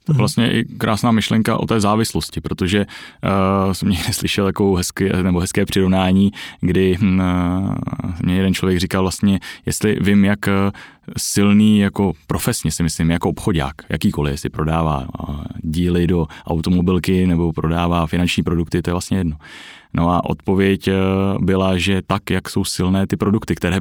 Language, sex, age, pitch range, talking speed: Czech, male, 20-39, 85-100 Hz, 150 wpm